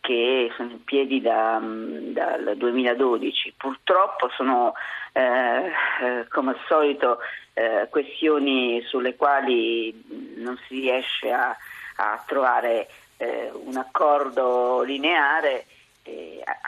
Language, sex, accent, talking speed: Italian, female, native, 95 wpm